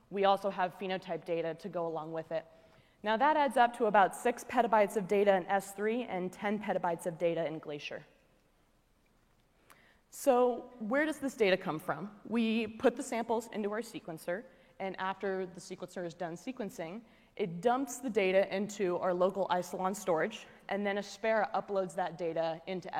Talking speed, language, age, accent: 170 wpm, English, 20-39, American